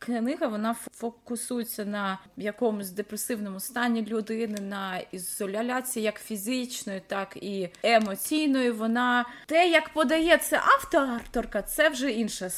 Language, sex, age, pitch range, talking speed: Ukrainian, female, 20-39, 220-290 Hz, 115 wpm